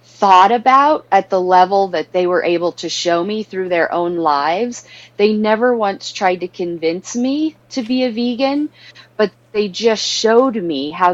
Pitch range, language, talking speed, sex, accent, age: 165-200 Hz, English, 180 wpm, female, American, 30-49